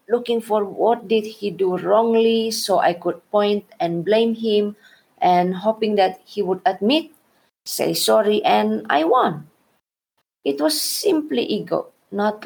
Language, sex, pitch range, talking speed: English, female, 180-220 Hz, 145 wpm